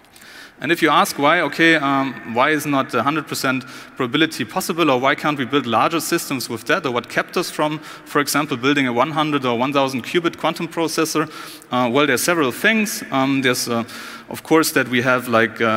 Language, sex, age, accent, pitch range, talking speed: English, male, 30-49, German, 120-160 Hz, 200 wpm